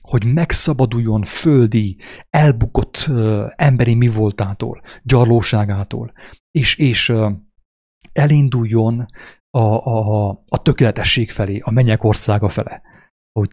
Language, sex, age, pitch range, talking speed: English, male, 30-49, 105-125 Hz, 105 wpm